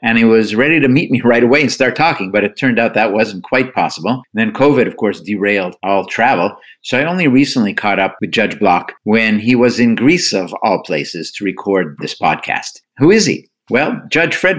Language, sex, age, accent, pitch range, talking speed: English, male, 50-69, American, 95-120 Hz, 220 wpm